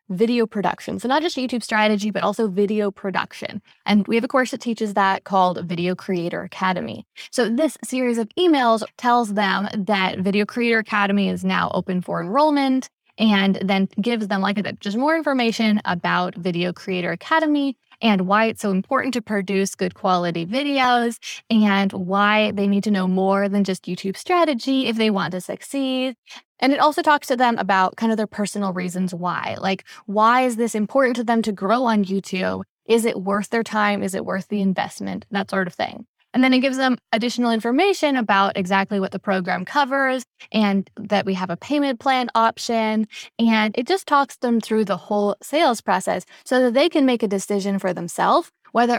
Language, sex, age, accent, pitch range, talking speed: English, female, 10-29, American, 195-245 Hz, 190 wpm